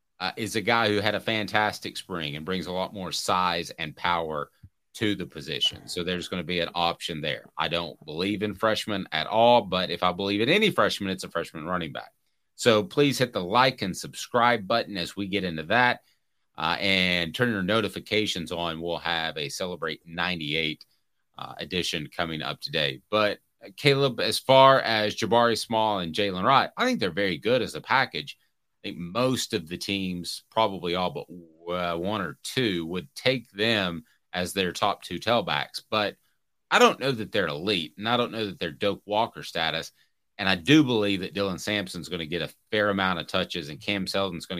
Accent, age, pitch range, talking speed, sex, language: American, 30-49, 85-110 Hz, 200 wpm, male, English